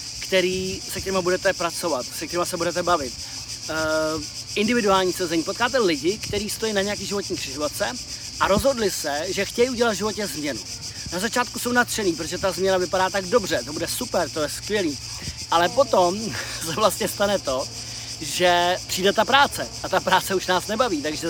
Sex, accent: male, native